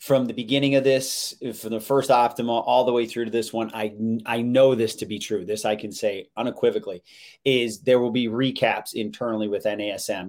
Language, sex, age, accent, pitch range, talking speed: English, male, 30-49, American, 110-130 Hz, 210 wpm